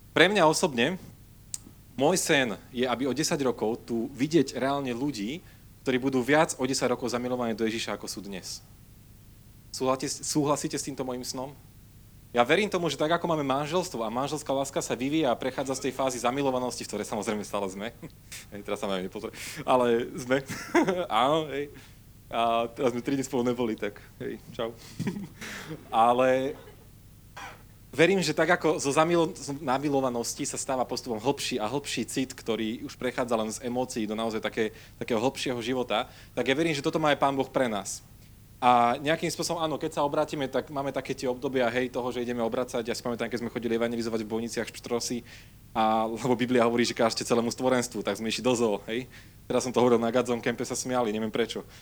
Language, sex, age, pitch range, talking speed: Slovak, male, 30-49, 115-140 Hz, 185 wpm